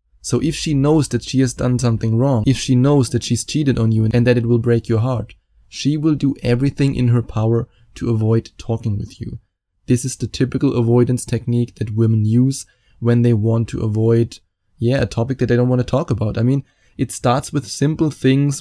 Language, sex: English, male